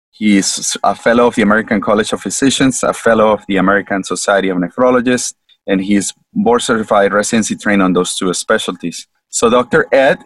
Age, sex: 30-49, male